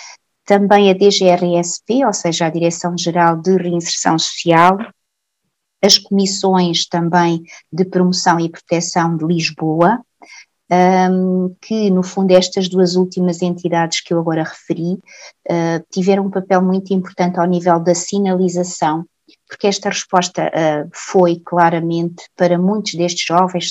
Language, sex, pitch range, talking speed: Portuguese, female, 170-190 Hz, 120 wpm